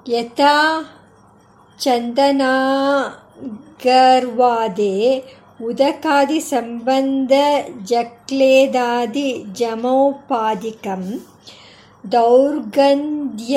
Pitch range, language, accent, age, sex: 230-275 Hz, Kannada, native, 50-69, male